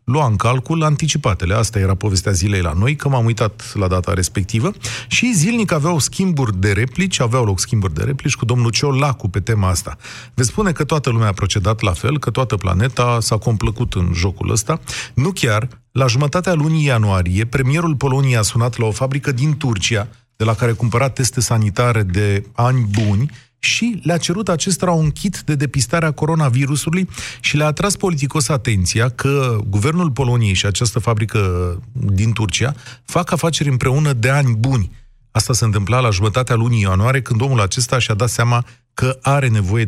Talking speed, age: 180 wpm, 30-49